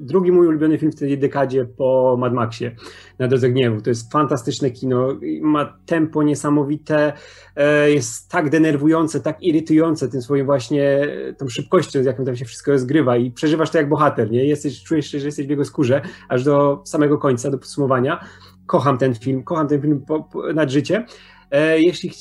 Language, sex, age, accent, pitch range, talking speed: Polish, male, 30-49, native, 140-155 Hz, 175 wpm